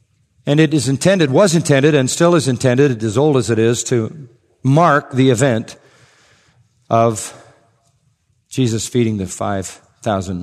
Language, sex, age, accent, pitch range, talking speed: English, male, 50-69, American, 115-140 Hz, 140 wpm